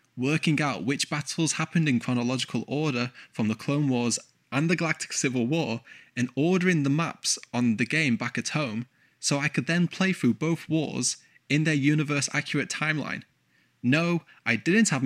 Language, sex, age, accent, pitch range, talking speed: English, male, 10-29, British, 120-150 Hz, 170 wpm